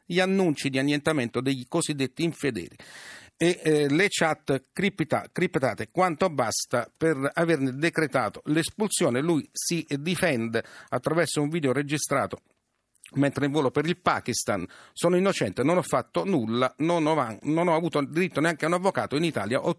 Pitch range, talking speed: 140-180 Hz, 150 wpm